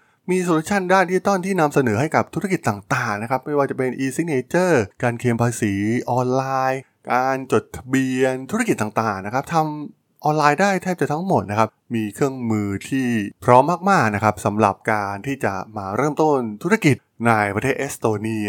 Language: Thai